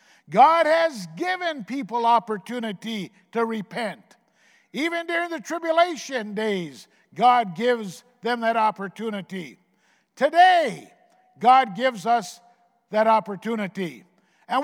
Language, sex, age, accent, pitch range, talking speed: English, male, 50-69, American, 220-285 Hz, 100 wpm